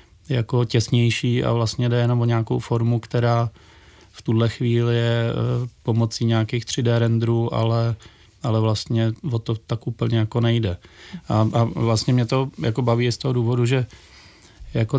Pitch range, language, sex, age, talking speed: 115-125 Hz, Czech, male, 30-49, 155 wpm